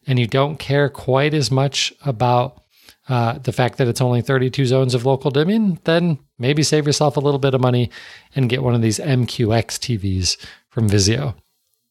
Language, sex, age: English, male, 40-59